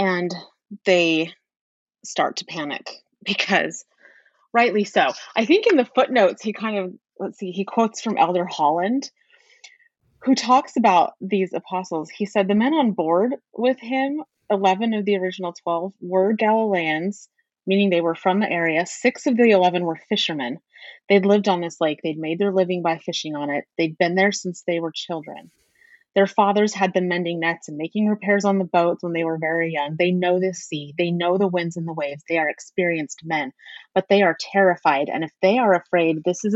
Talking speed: 195 wpm